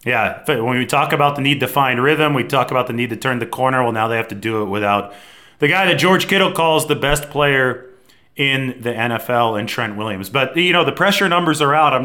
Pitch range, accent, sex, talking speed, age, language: 110-140 Hz, American, male, 255 wpm, 30-49, English